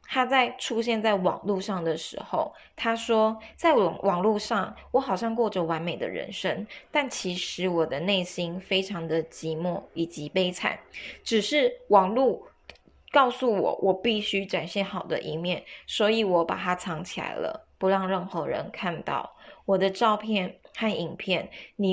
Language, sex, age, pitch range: Chinese, female, 20-39, 175-230 Hz